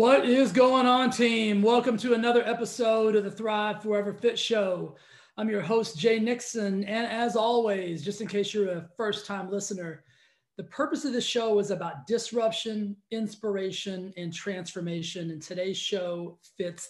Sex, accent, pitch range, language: male, American, 170-215 Hz, English